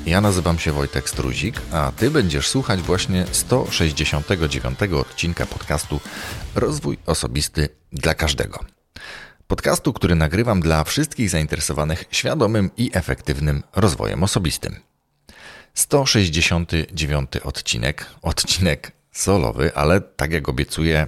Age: 30-49